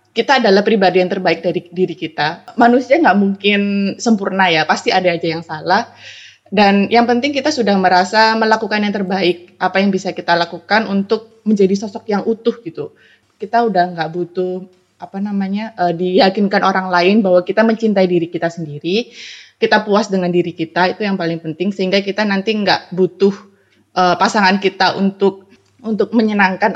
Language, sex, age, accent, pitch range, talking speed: Indonesian, female, 20-39, native, 175-210 Hz, 165 wpm